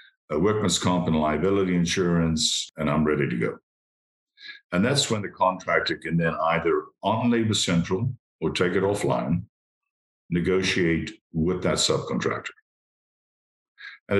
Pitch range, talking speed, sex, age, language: 75-110 Hz, 130 wpm, male, 50-69, English